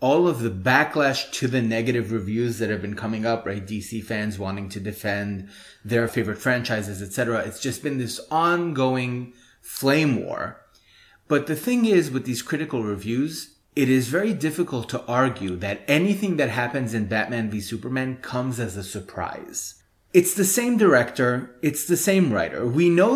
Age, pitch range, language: 30-49, 115-150 Hz, English